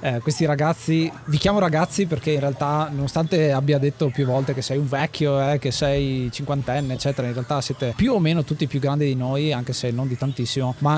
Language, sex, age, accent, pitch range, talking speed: Italian, male, 20-39, native, 130-150 Hz, 220 wpm